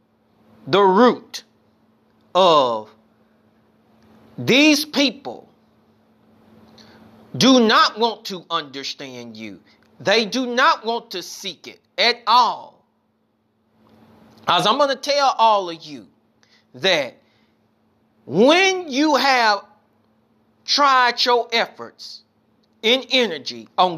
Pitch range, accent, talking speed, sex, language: 190-255 Hz, American, 95 wpm, male, English